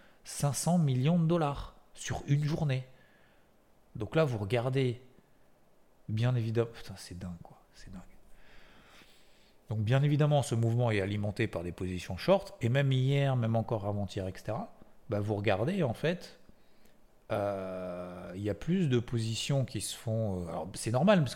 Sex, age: male, 40-59